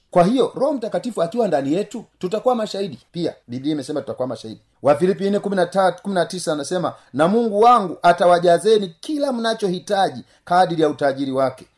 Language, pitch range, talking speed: Swahili, 140-200 Hz, 140 wpm